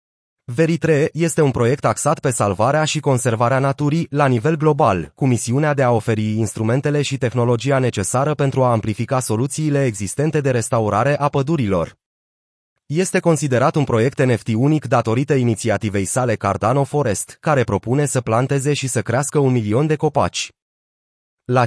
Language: Romanian